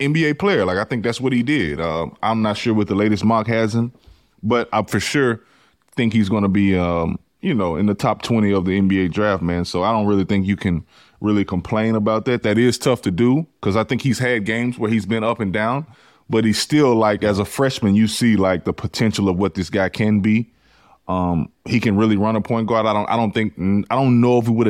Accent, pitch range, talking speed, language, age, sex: American, 100-125 Hz, 250 wpm, English, 20-39, male